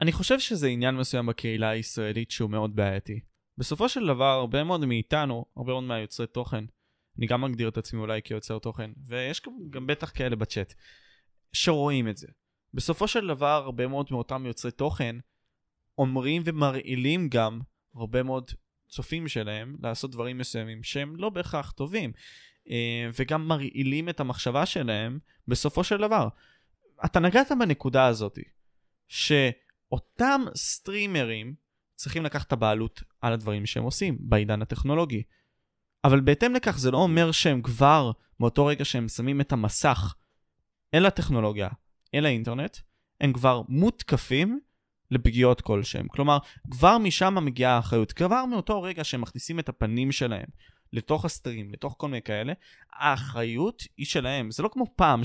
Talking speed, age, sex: 145 wpm, 20-39, male